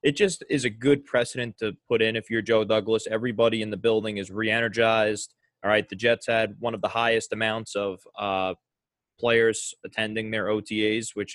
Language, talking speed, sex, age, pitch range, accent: English, 195 wpm, male, 20-39, 100-120 Hz, American